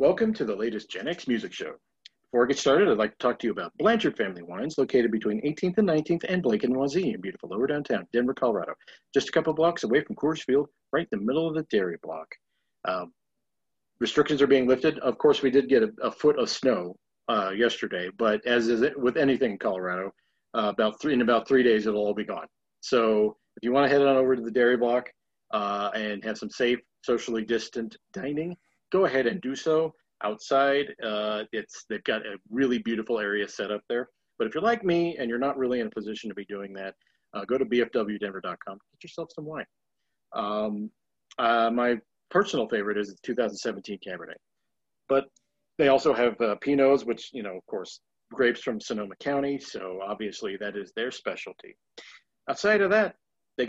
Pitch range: 110-150 Hz